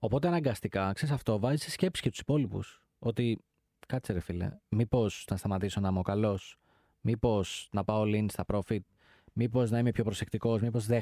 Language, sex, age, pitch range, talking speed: Greek, male, 20-39, 110-145 Hz, 180 wpm